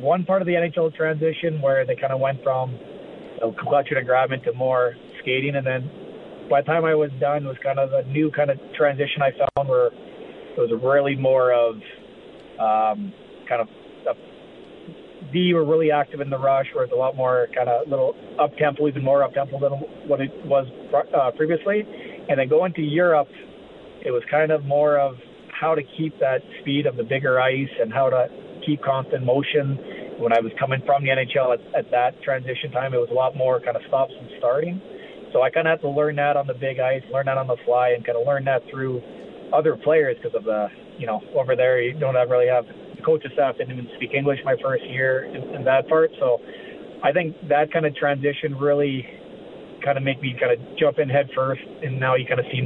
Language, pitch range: English, 130-160 Hz